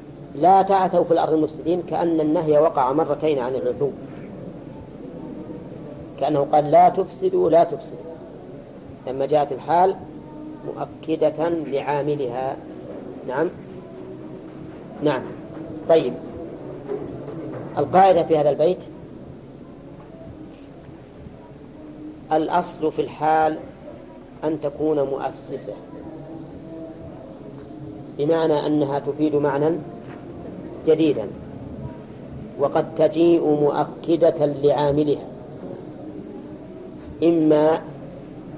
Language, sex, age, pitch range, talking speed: Arabic, female, 40-59, 145-165 Hz, 70 wpm